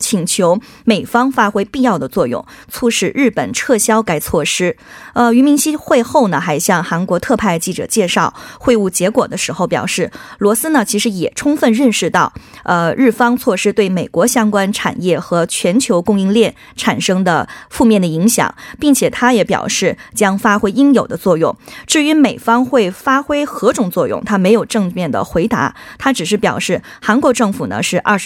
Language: Korean